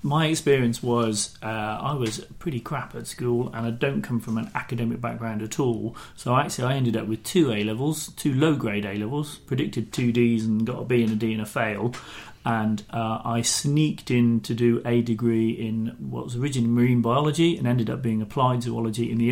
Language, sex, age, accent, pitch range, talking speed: English, male, 40-59, British, 110-125 Hz, 210 wpm